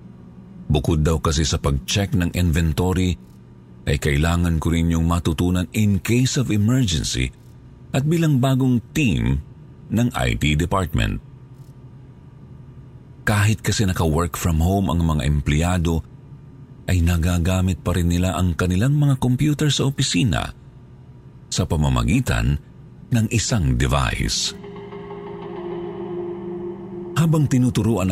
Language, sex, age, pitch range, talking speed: Filipino, male, 50-69, 85-135 Hz, 105 wpm